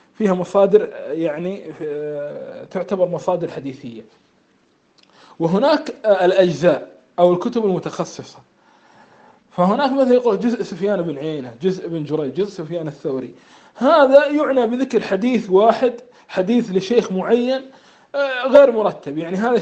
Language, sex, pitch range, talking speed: Arabic, male, 180-240 Hz, 110 wpm